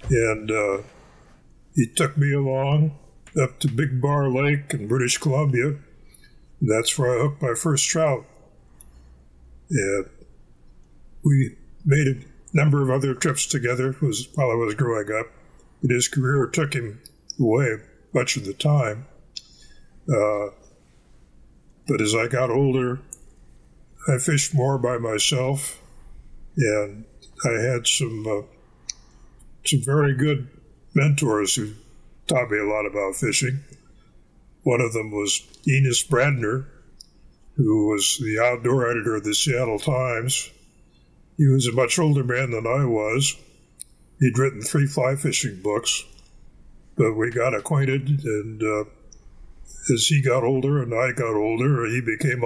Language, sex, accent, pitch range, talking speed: English, male, American, 105-140 Hz, 135 wpm